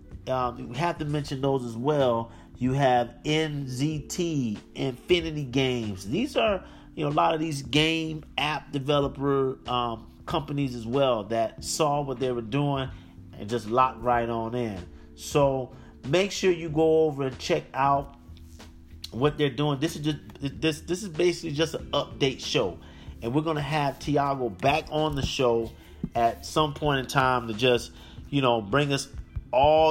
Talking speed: 170 wpm